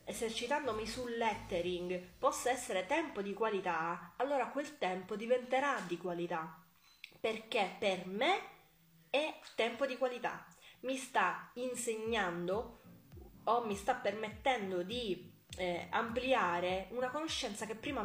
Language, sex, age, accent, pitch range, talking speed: Italian, female, 20-39, native, 190-250 Hz, 115 wpm